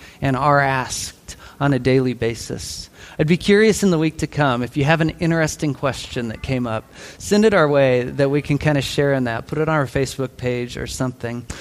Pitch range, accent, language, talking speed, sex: 110-150 Hz, American, English, 225 wpm, male